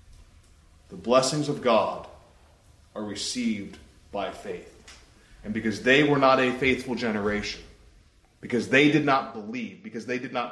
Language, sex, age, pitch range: English, male, 30-49, 115-165 Hz